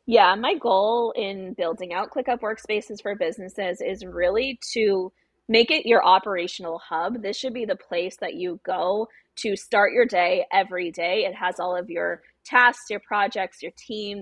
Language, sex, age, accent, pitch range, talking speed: English, female, 20-39, American, 185-245 Hz, 175 wpm